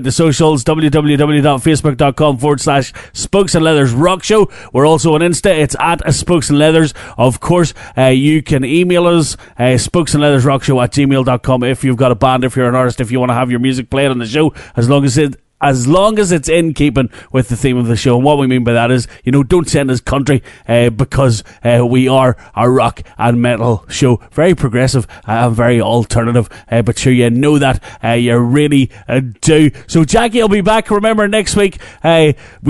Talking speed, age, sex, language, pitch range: 215 wpm, 30-49, male, English, 125-170 Hz